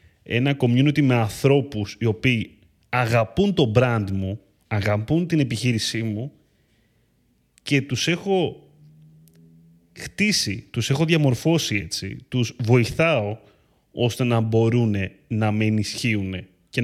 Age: 30-49